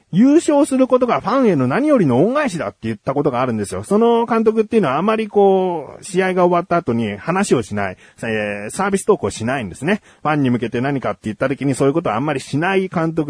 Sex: male